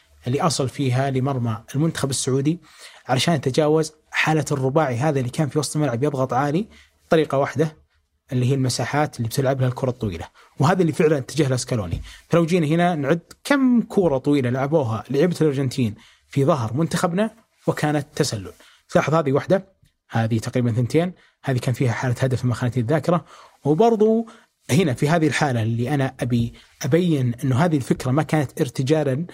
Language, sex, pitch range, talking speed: Arabic, male, 135-170 Hz, 155 wpm